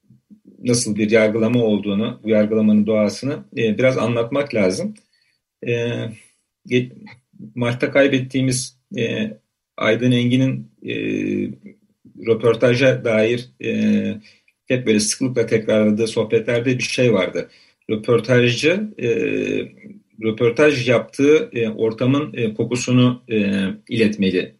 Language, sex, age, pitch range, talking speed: Turkish, male, 40-59, 110-145 Hz, 95 wpm